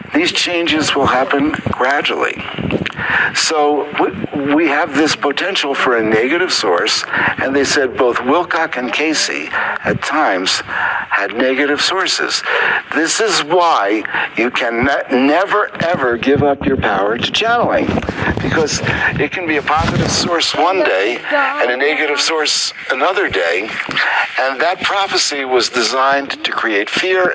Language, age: English, 60-79